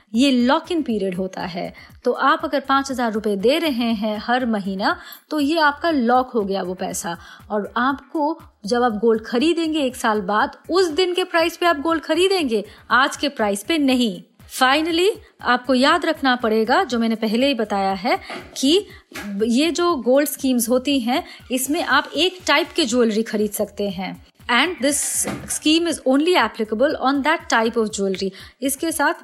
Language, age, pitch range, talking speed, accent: Hindi, 30-49, 225-320 Hz, 175 wpm, native